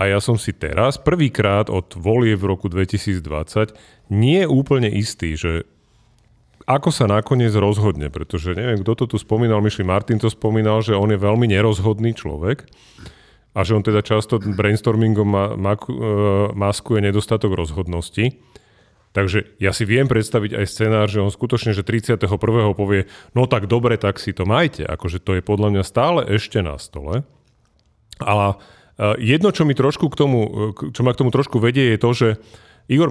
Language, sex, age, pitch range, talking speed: Slovak, male, 40-59, 100-125 Hz, 170 wpm